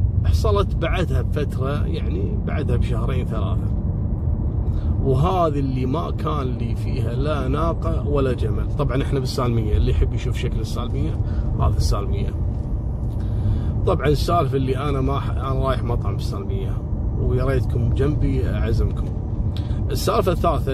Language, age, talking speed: Arabic, 30-49, 120 wpm